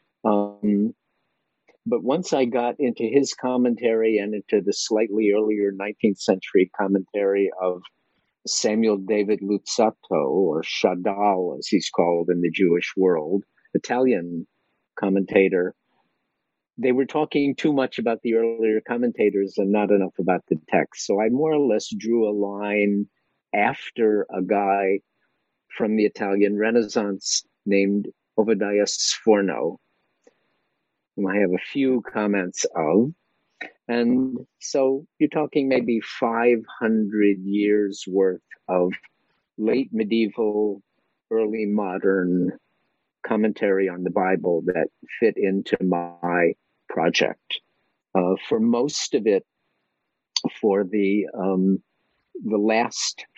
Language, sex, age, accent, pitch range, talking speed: English, male, 50-69, American, 100-115 Hz, 115 wpm